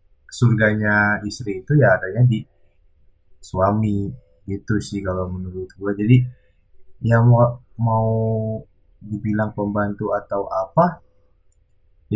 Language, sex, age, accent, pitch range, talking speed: Indonesian, male, 20-39, native, 100-125 Hz, 105 wpm